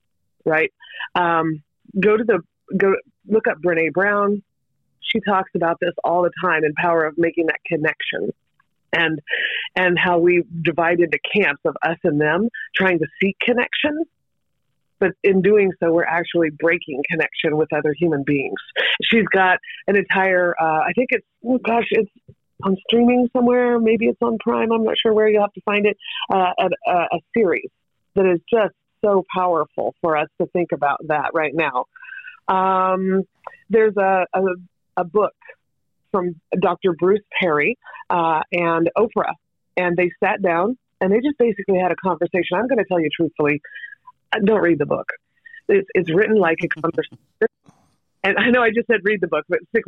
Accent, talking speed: American, 175 wpm